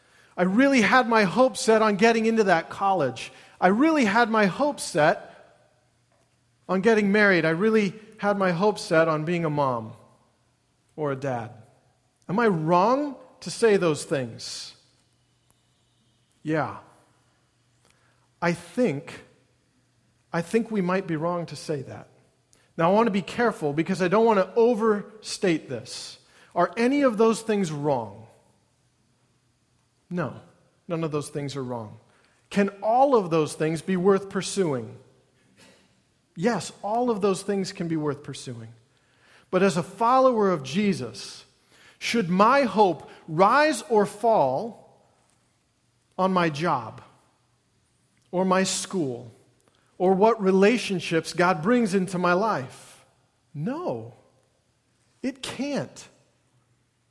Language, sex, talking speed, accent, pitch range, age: English, male, 125 wpm, American, 130-215 Hz, 40-59